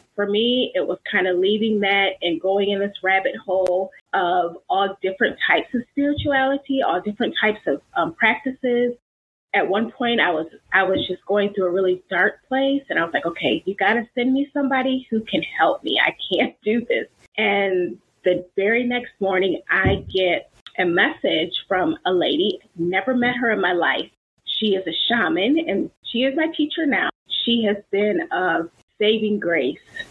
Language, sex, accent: English, female, American